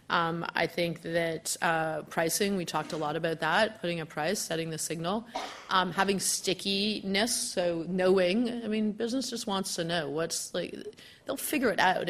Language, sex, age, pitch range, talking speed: English, female, 30-49, 165-195 Hz, 180 wpm